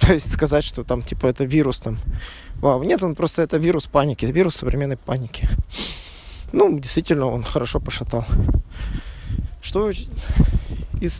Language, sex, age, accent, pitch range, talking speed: Russian, male, 20-39, native, 120-160 Hz, 125 wpm